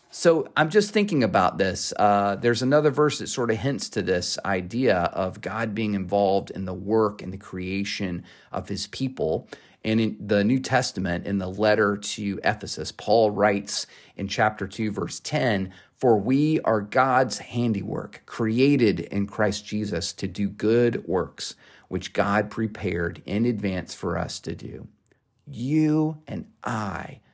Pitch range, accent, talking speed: 95-120 Hz, American, 160 wpm